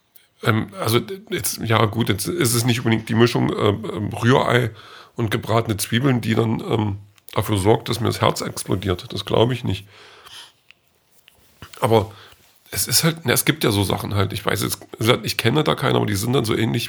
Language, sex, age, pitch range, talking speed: German, male, 40-59, 105-125 Hz, 195 wpm